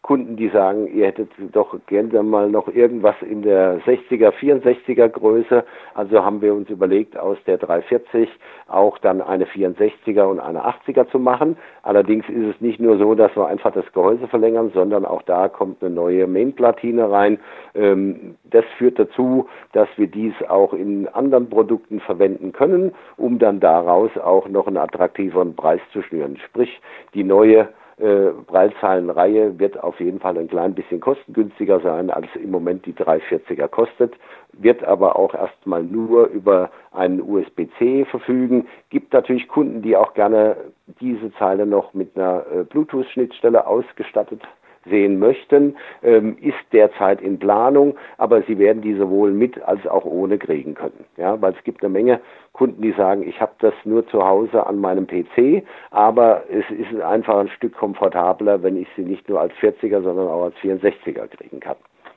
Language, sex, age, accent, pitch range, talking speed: German, male, 50-69, German, 100-125 Hz, 165 wpm